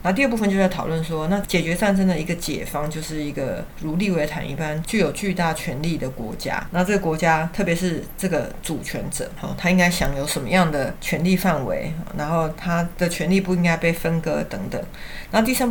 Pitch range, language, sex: 155-190 Hz, Chinese, female